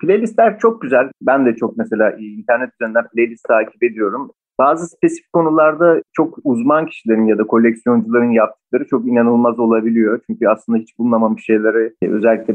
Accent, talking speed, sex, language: native, 150 wpm, male, Turkish